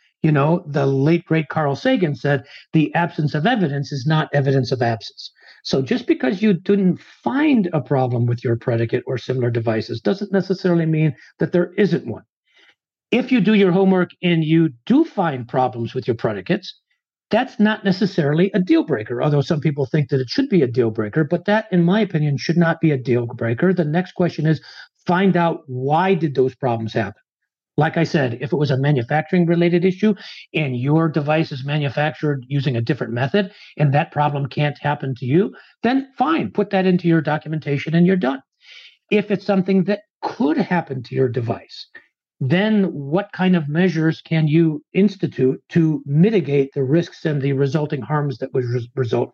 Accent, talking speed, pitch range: American, 185 wpm, 135-185 Hz